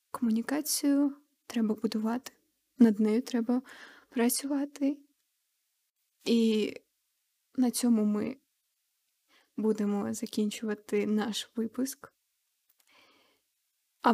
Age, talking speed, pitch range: 20-39, 70 wpm, 210-255 Hz